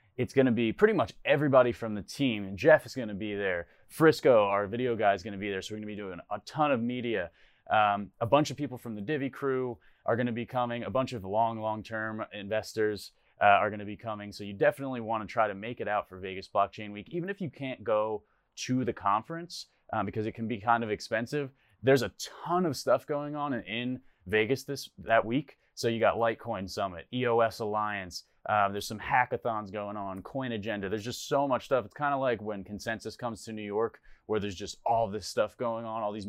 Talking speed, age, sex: 230 wpm, 20-39, male